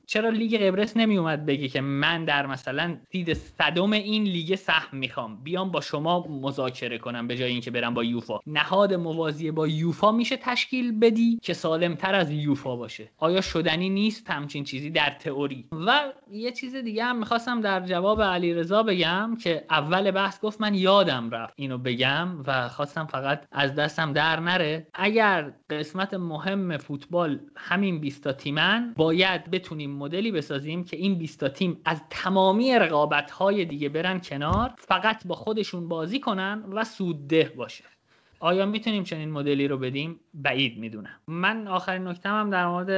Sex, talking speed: male, 165 wpm